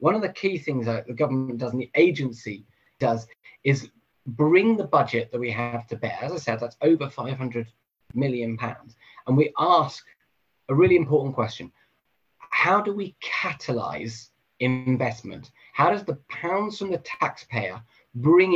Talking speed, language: 160 wpm, English